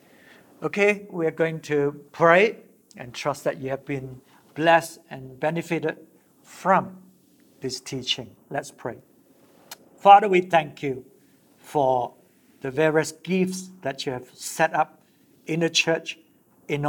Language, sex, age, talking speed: English, male, 60-79, 130 wpm